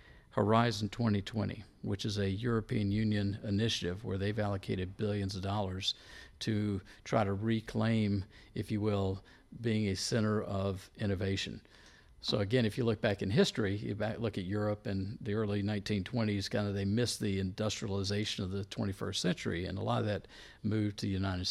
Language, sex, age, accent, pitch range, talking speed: English, male, 50-69, American, 100-110 Hz, 175 wpm